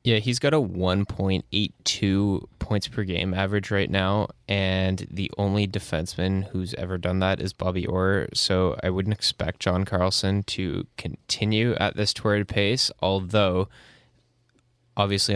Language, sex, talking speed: English, male, 140 wpm